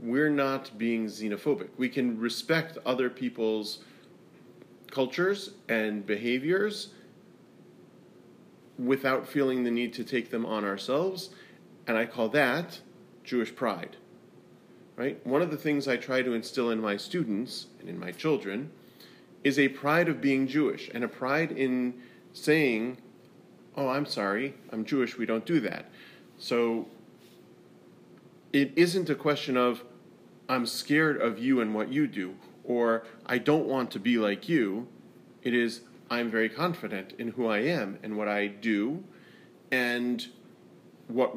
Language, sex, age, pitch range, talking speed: English, male, 40-59, 110-135 Hz, 145 wpm